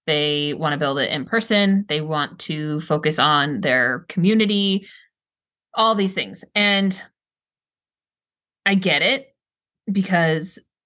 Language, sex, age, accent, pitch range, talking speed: English, female, 20-39, American, 165-205 Hz, 120 wpm